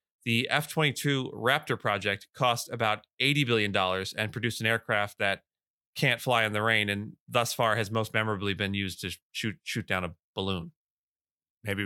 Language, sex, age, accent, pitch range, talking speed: English, male, 30-49, American, 100-130 Hz, 170 wpm